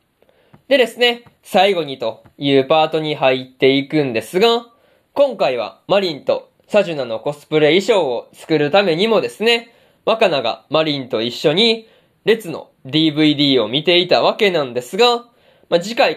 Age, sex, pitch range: 20-39, male, 150-235 Hz